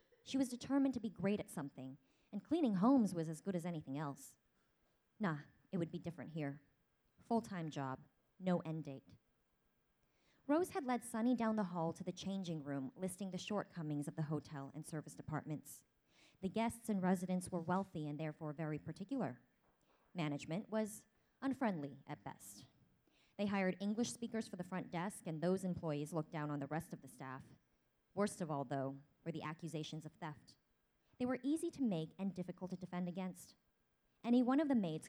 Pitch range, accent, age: 150-205 Hz, American, 20-39